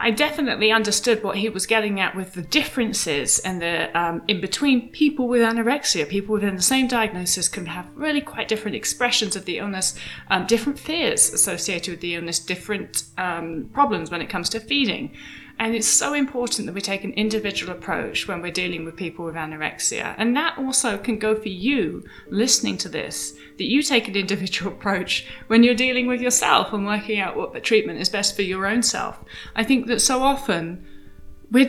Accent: British